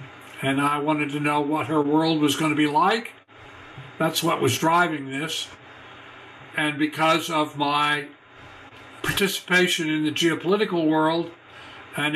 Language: English